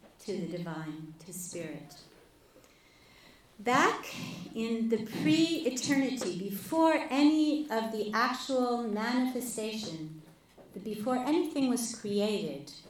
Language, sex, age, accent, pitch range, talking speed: English, female, 40-59, American, 170-230 Hz, 90 wpm